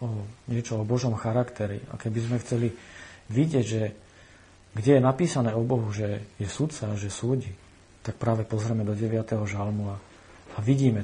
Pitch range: 95-120 Hz